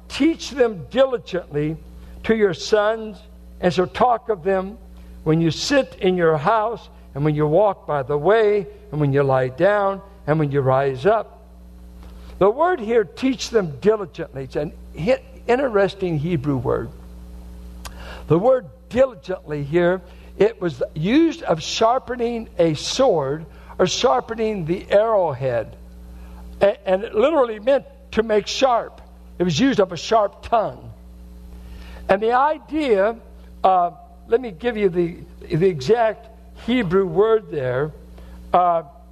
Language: English